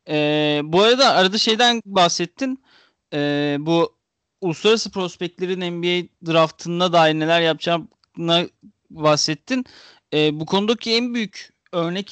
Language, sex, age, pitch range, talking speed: Turkish, male, 40-59, 155-205 Hz, 110 wpm